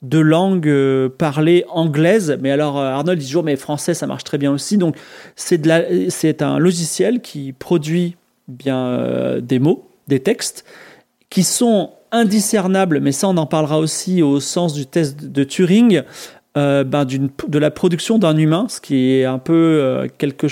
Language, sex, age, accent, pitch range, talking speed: French, male, 30-49, French, 145-190 Hz, 185 wpm